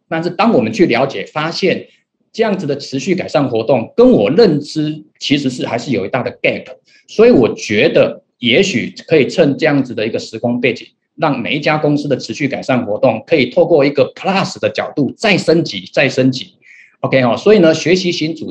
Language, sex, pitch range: Chinese, male, 130-190 Hz